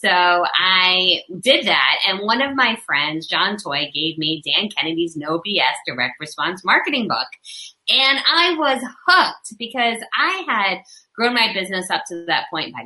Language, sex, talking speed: English, female, 170 wpm